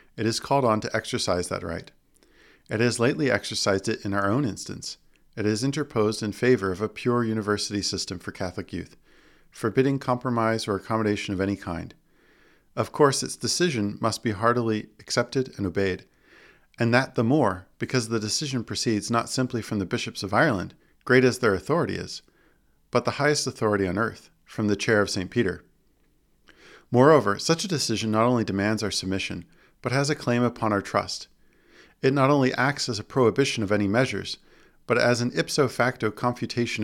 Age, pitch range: 40-59, 105-130 Hz